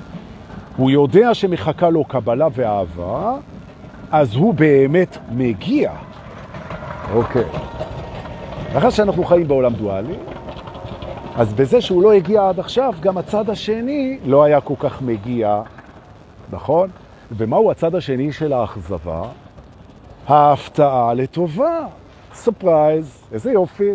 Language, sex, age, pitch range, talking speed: Hebrew, male, 50-69, 110-180 Hz, 105 wpm